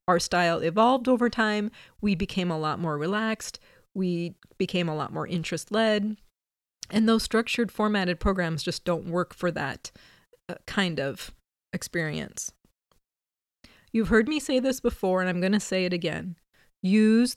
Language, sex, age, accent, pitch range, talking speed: English, female, 30-49, American, 180-225 Hz, 160 wpm